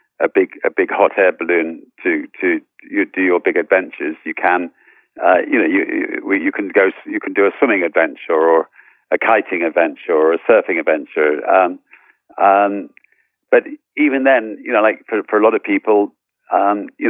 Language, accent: English, British